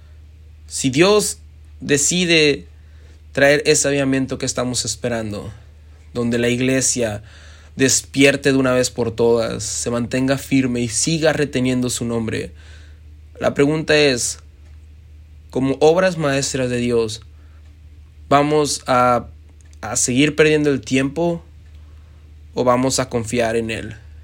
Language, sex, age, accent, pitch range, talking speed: Spanish, male, 20-39, Mexican, 85-135 Hz, 115 wpm